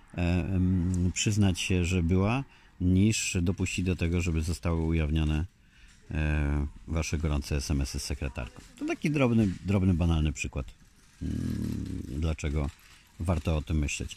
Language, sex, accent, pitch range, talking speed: Polish, male, native, 80-95 Hz, 115 wpm